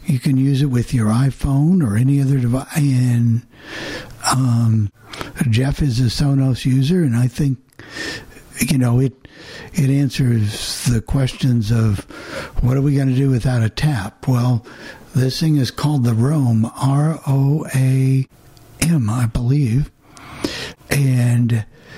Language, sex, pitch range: English, male, 120-145 Hz